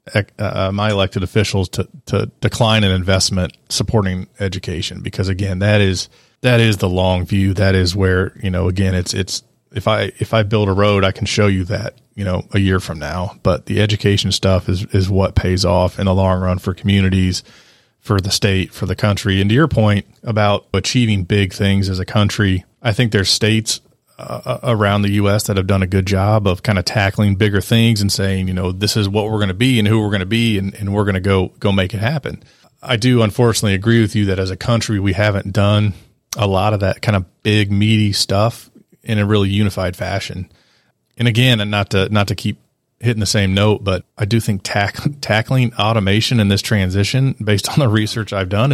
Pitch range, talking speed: 95-110 Hz, 220 wpm